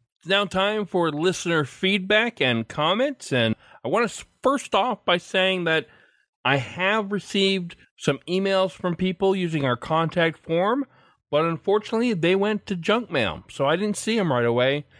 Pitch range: 125-185 Hz